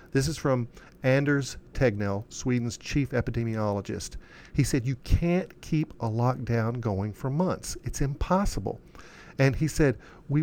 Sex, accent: male, American